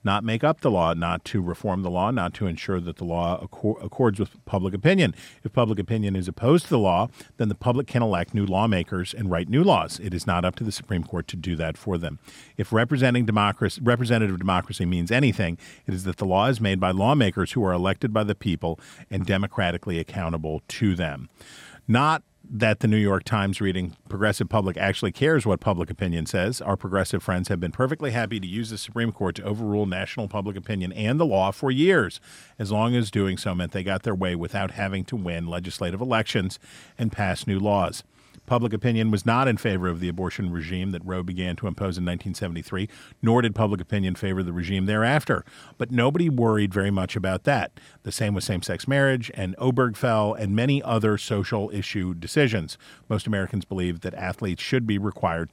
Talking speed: 205 wpm